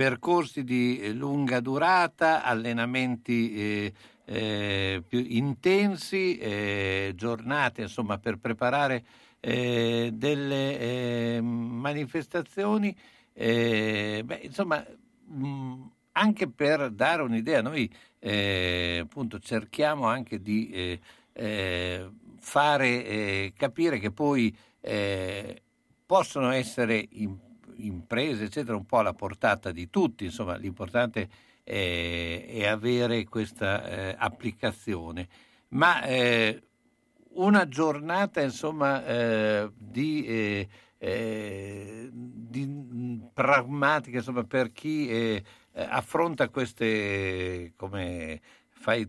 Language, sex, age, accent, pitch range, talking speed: Italian, male, 60-79, native, 100-135 Hz, 95 wpm